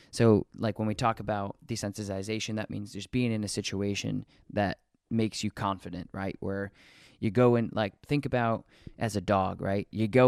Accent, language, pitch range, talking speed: American, English, 100-120 Hz, 185 wpm